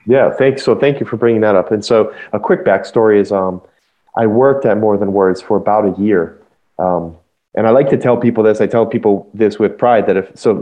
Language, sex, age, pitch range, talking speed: English, male, 30-49, 95-115 Hz, 245 wpm